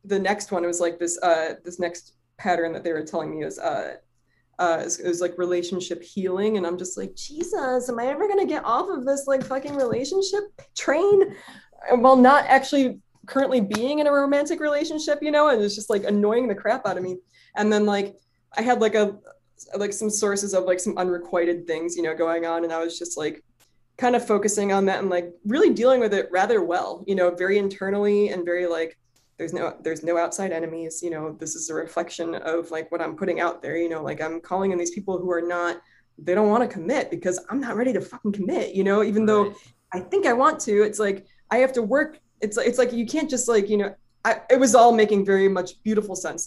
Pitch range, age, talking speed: 175-240 Hz, 20-39, 235 wpm